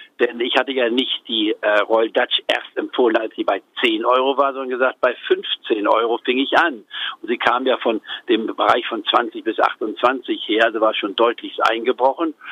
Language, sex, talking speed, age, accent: German, male, 200 wpm, 50-69, German